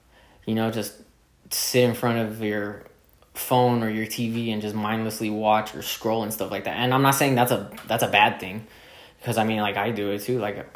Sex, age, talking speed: male, 10-29, 230 wpm